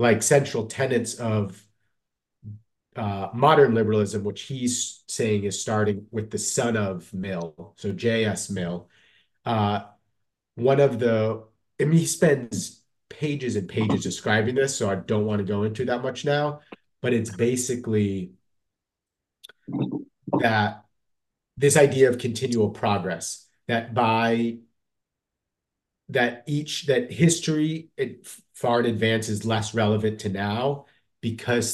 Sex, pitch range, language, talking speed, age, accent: male, 105-120 Hz, English, 125 wpm, 30-49, American